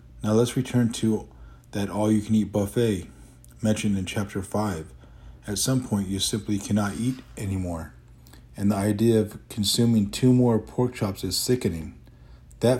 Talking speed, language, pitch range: 145 wpm, English, 95-110 Hz